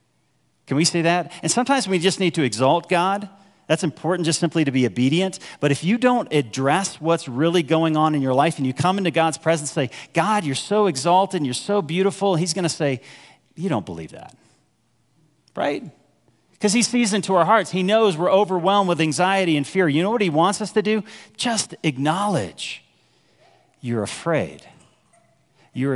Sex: male